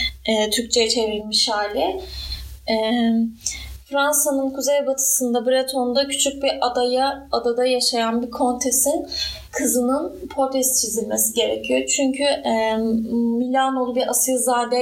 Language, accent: Turkish, native